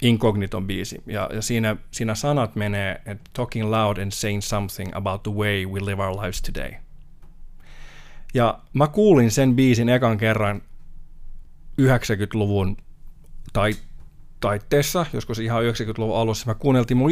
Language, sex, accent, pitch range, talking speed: Finnish, male, native, 100-120 Hz, 135 wpm